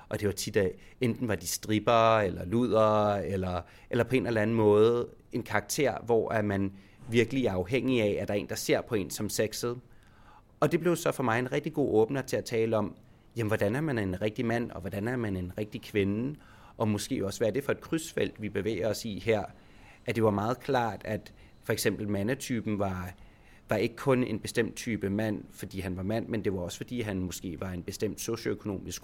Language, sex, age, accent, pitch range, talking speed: Danish, male, 30-49, native, 100-125 Hz, 225 wpm